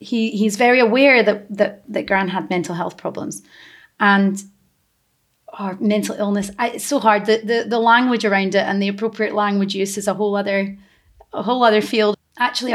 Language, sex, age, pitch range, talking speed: English, female, 30-49, 195-225 Hz, 190 wpm